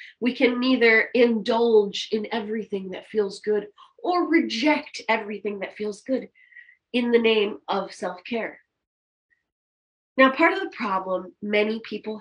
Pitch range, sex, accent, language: 195-295 Hz, female, American, English